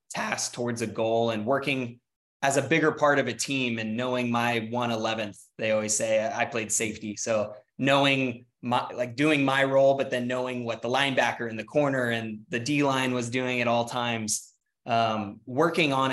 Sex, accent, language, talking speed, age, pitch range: male, American, English, 195 wpm, 20-39, 115-130 Hz